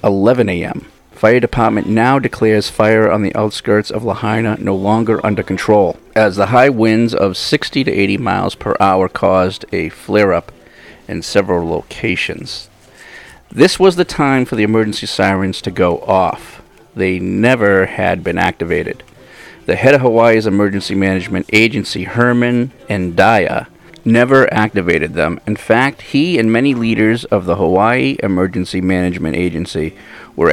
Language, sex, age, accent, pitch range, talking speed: English, male, 40-59, American, 95-115 Hz, 145 wpm